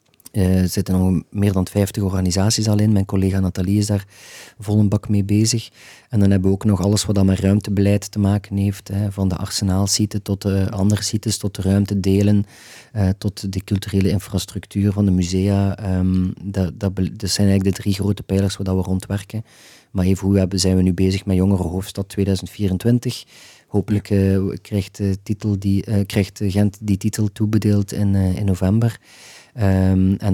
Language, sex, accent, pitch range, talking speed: Dutch, male, Dutch, 95-105 Hz, 180 wpm